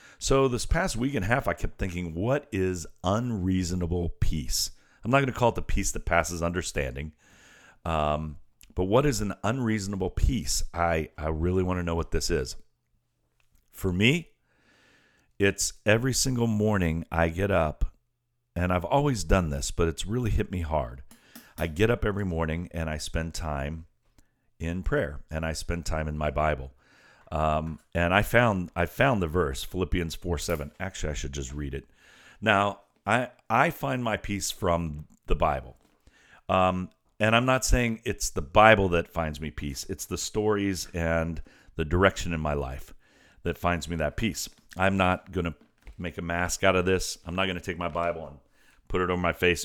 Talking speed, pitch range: 185 wpm, 80-100 Hz